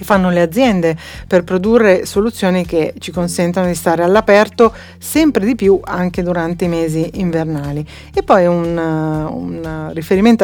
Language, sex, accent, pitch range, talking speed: Italian, female, native, 170-220 Hz, 145 wpm